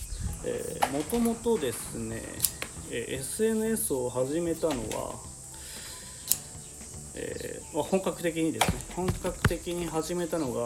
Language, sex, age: Japanese, male, 40-59